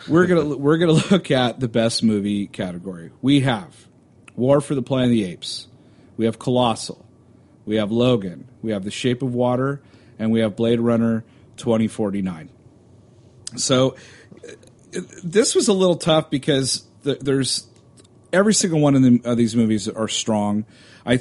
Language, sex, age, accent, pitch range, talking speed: English, male, 40-59, American, 105-125 Hz, 165 wpm